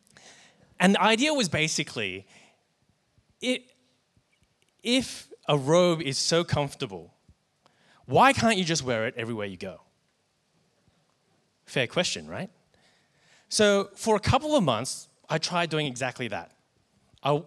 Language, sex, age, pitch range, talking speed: English, male, 20-39, 125-175 Hz, 125 wpm